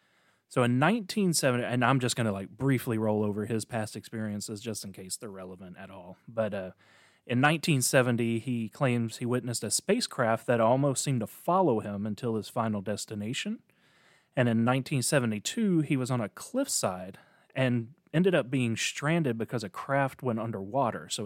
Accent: American